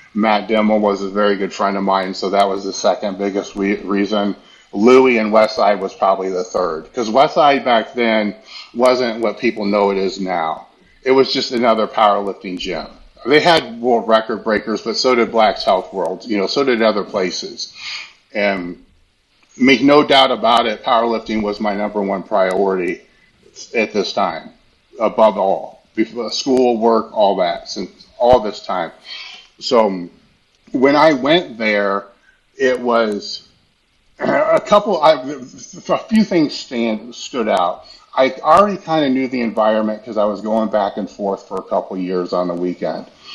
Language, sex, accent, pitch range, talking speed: English, male, American, 100-125 Hz, 165 wpm